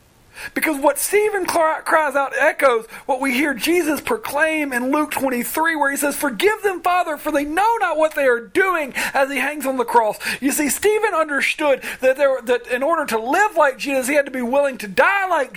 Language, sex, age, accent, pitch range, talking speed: English, male, 40-59, American, 255-335 Hz, 210 wpm